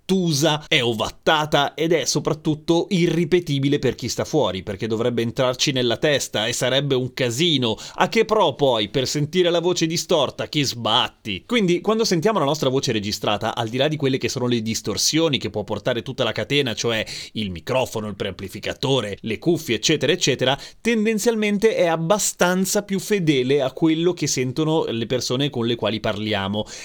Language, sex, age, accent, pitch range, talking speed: Italian, male, 30-49, native, 115-155 Hz, 170 wpm